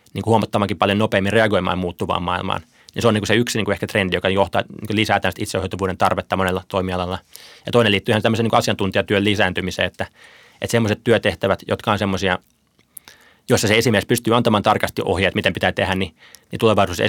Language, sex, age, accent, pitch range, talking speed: Finnish, male, 20-39, native, 95-110 Hz, 190 wpm